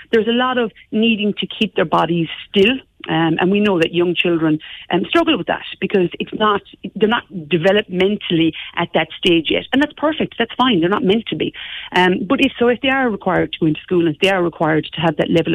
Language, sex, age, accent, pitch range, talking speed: English, female, 40-59, Irish, 160-195 Hz, 240 wpm